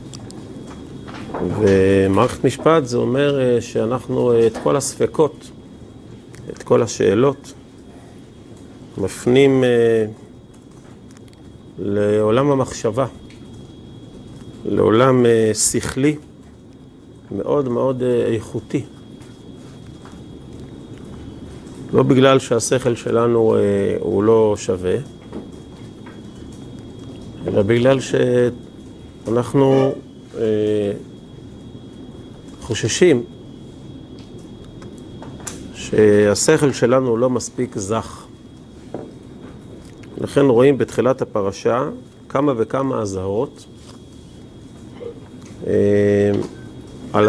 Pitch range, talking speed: 110-130 Hz, 60 wpm